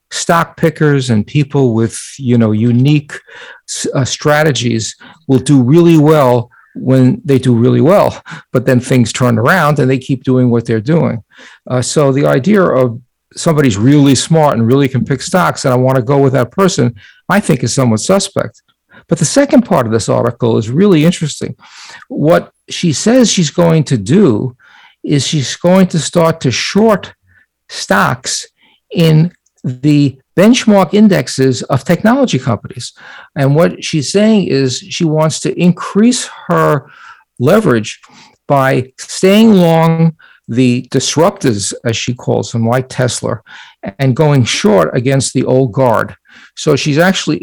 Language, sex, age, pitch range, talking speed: English, male, 50-69, 125-165 Hz, 155 wpm